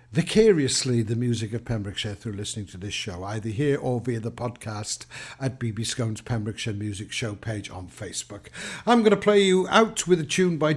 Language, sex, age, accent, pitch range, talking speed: English, male, 60-79, British, 115-150 Hz, 195 wpm